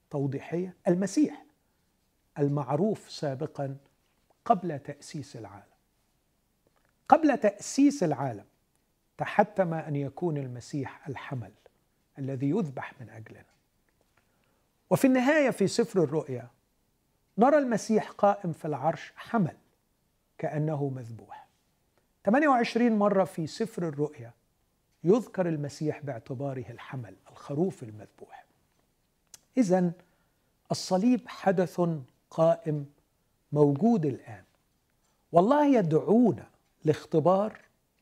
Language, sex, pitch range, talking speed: Arabic, male, 140-205 Hz, 80 wpm